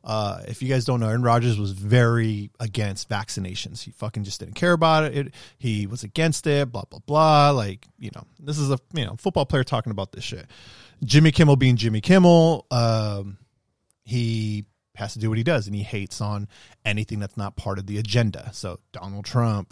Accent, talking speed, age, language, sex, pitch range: American, 205 wpm, 30-49, English, male, 105-130 Hz